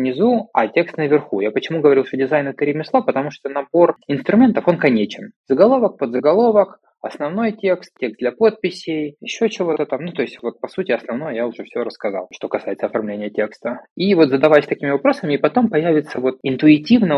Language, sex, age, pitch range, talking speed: Russian, male, 20-39, 105-155 Hz, 180 wpm